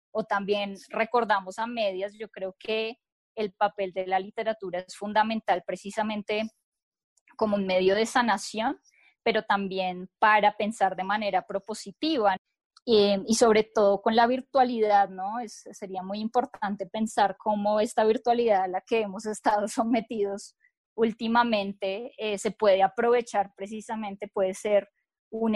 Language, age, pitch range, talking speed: Spanish, 10-29, 195-220 Hz, 140 wpm